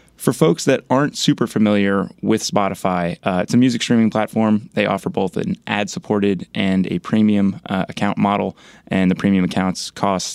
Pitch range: 95-110 Hz